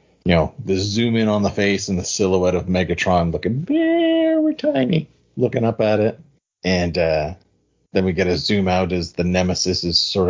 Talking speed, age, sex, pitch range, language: 190 wpm, 40-59, male, 80-95 Hz, English